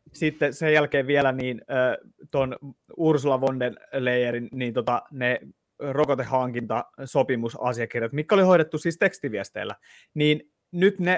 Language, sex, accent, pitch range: Finnish, male, native, 130-170 Hz